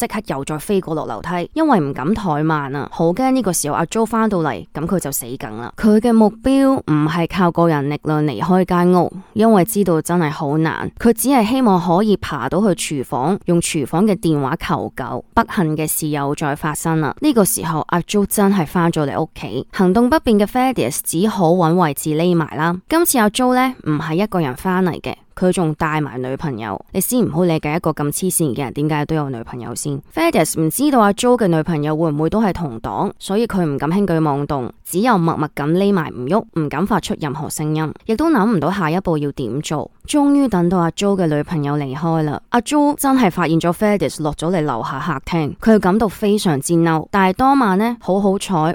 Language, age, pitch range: Chinese, 20-39, 155-210 Hz